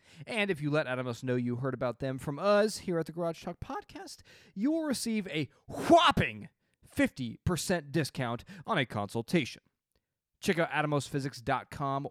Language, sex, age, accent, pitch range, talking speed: English, male, 20-39, American, 130-185 Hz, 155 wpm